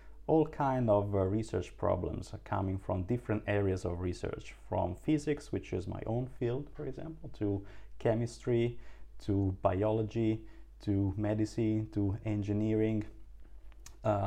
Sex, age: male, 30-49